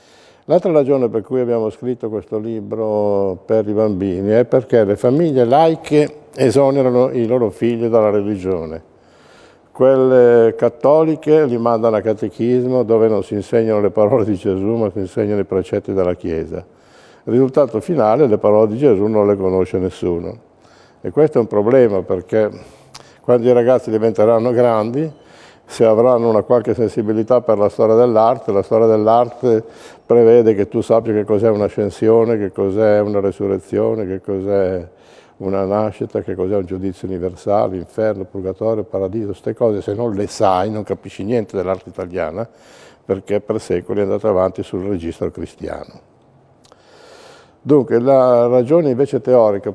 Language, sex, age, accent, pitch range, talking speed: Italian, male, 60-79, native, 100-120 Hz, 155 wpm